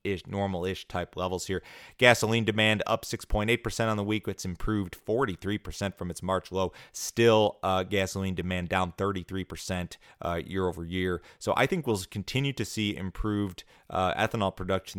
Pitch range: 90-100 Hz